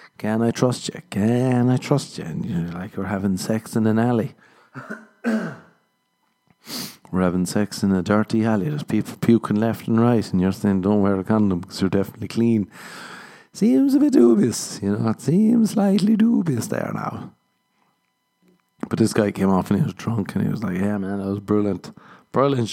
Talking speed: 190 wpm